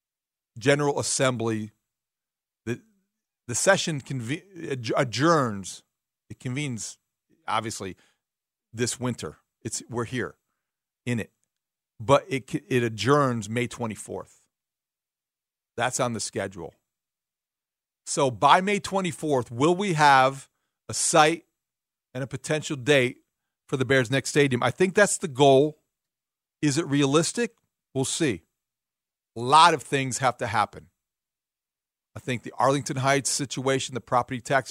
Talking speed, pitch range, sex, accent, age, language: 125 wpm, 125-155 Hz, male, American, 40-59, English